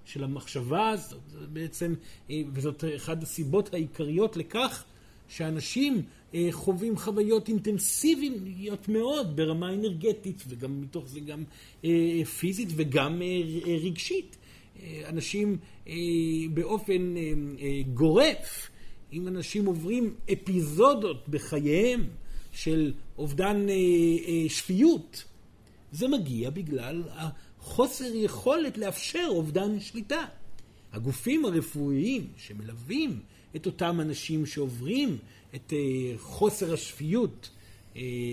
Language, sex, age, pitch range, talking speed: Hebrew, male, 50-69, 140-205 Hz, 85 wpm